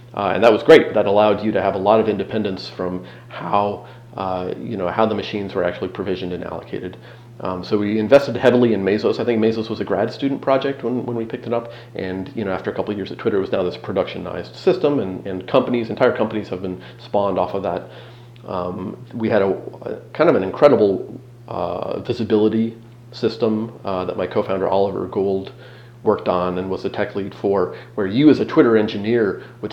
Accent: American